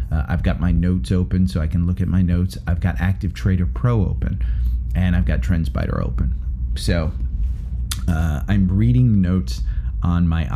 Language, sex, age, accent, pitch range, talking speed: English, male, 30-49, American, 80-95 Hz, 175 wpm